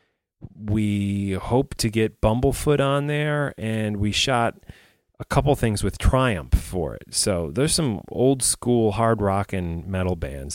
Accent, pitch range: American, 80-105 Hz